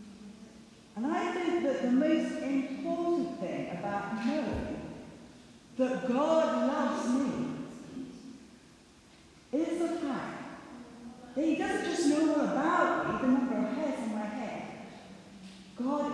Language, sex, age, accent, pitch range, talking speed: English, female, 50-69, British, 205-290 Hz, 120 wpm